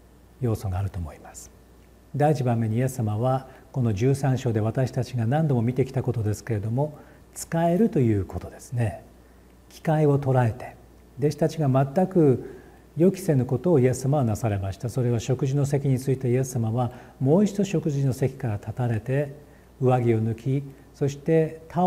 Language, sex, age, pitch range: Japanese, male, 40-59, 115-145 Hz